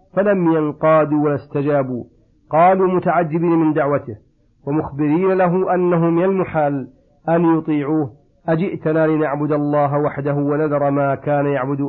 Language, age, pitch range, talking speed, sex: Arabic, 50-69, 145-165 Hz, 115 wpm, male